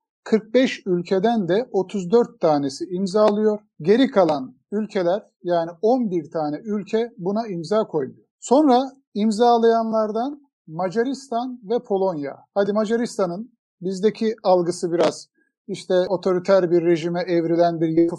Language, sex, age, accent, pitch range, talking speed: Turkish, male, 50-69, native, 185-240 Hz, 110 wpm